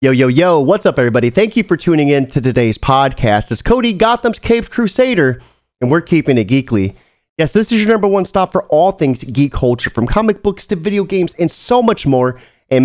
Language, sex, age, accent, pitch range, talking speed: English, male, 30-49, American, 135-195 Hz, 220 wpm